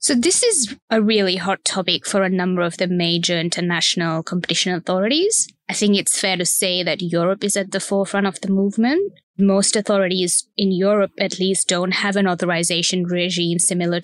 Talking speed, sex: 185 wpm, female